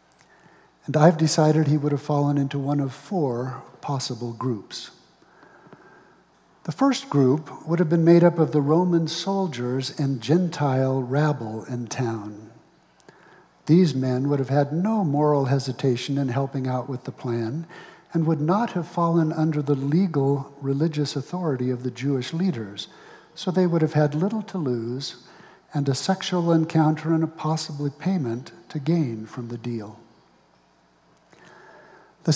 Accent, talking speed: American, 150 wpm